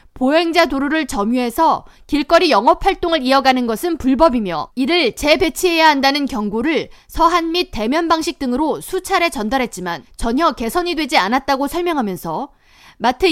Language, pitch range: Korean, 245-330 Hz